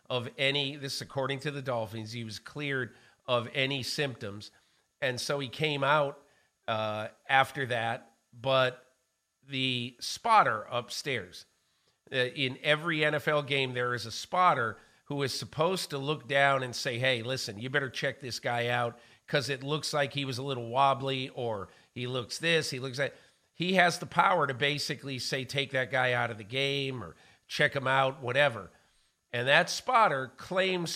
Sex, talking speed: male, 175 wpm